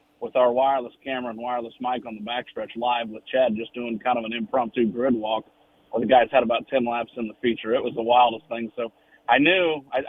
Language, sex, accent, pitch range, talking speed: English, male, American, 115-140 Hz, 230 wpm